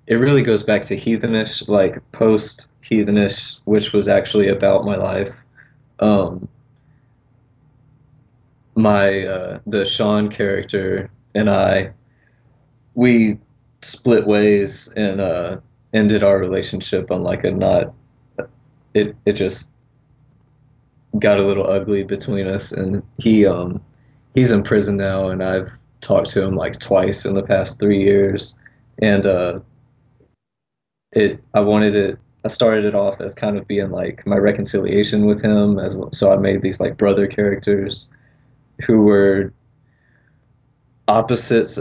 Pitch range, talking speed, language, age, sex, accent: 100-125 Hz, 135 wpm, English, 20-39, male, American